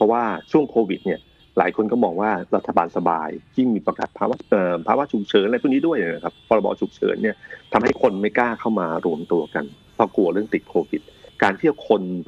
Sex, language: male, Thai